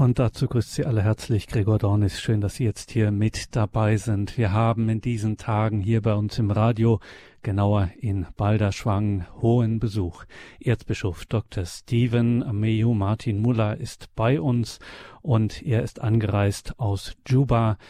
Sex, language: male, German